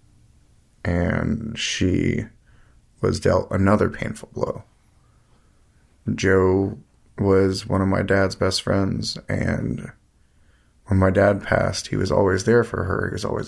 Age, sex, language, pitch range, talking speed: 30-49, male, English, 90-110 Hz, 130 wpm